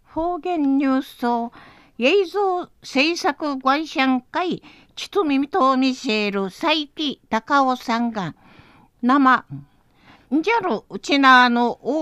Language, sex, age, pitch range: Japanese, female, 50-69, 235-310 Hz